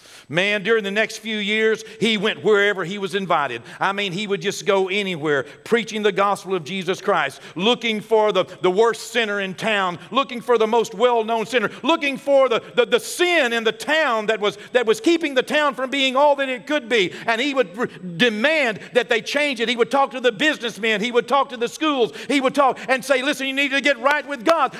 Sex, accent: male, American